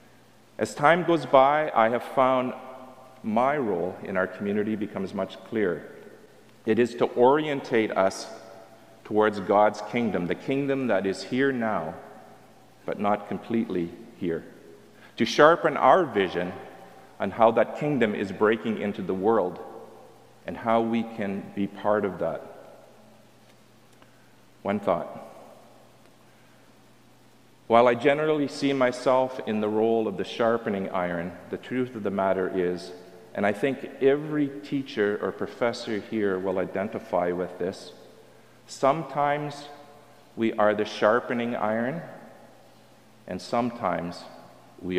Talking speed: 125 wpm